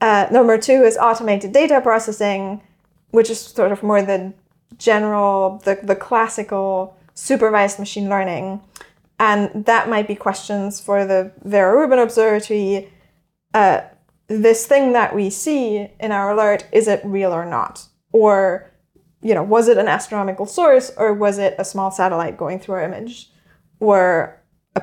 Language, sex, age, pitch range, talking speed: English, female, 20-39, 190-225 Hz, 155 wpm